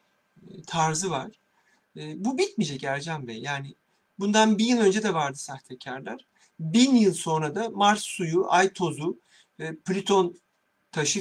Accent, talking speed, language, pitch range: native, 125 wpm, Turkish, 155-210 Hz